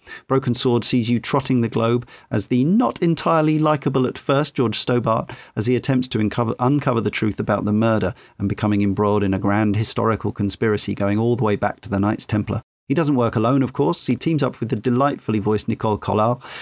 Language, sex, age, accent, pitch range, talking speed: English, male, 40-59, British, 105-130 Hz, 215 wpm